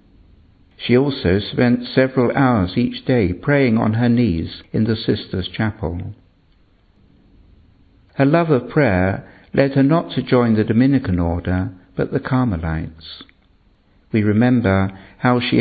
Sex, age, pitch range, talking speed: male, 60-79, 95-125 Hz, 130 wpm